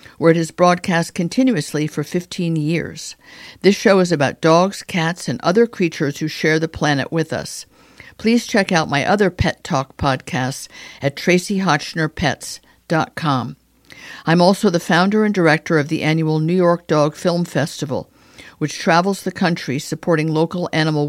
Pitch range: 150-185 Hz